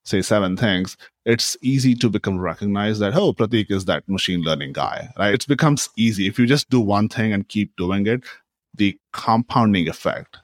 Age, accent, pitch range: 30-49, Indian, 95-125 Hz